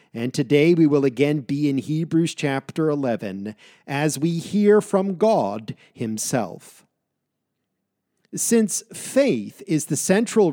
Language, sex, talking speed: English, male, 120 wpm